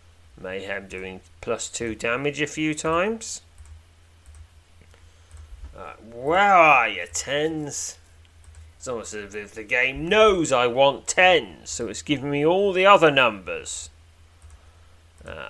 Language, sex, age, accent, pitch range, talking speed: English, male, 30-49, British, 80-120 Hz, 125 wpm